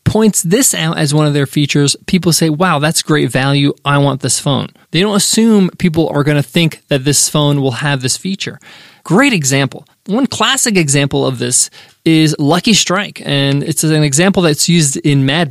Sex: male